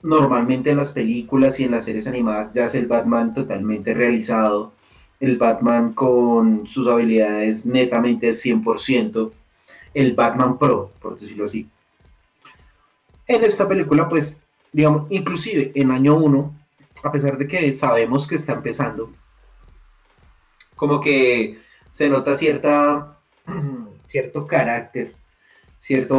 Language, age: Spanish, 30-49